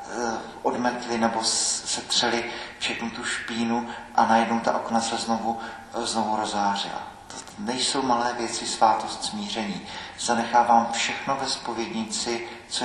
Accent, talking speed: native, 105 wpm